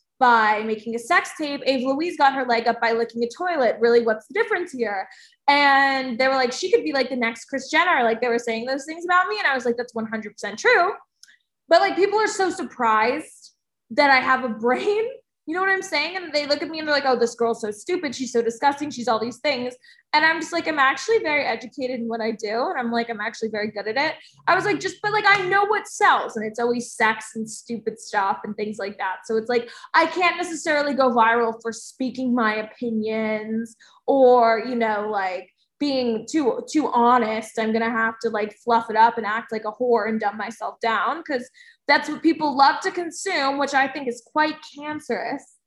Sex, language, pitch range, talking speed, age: female, English, 225-300 Hz, 230 wpm, 20-39